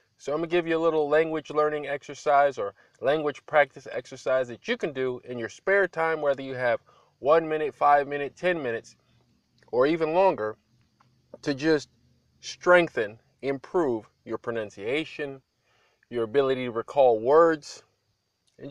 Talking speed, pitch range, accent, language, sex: 150 wpm, 130-180 Hz, American, English, male